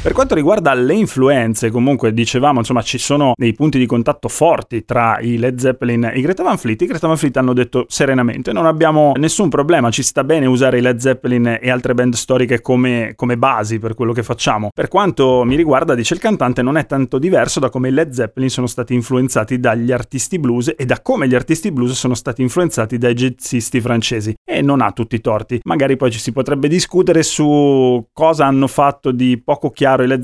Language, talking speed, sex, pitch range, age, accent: Italian, 215 wpm, male, 125-150 Hz, 30-49, native